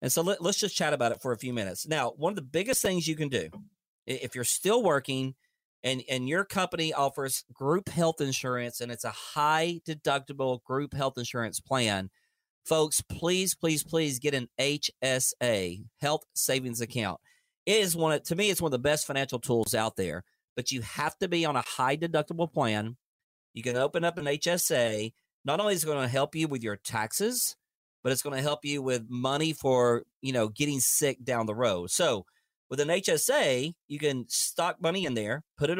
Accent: American